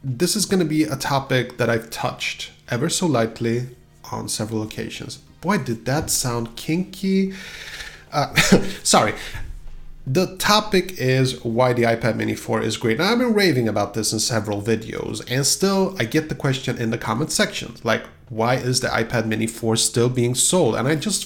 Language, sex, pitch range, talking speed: English, male, 115-155 Hz, 180 wpm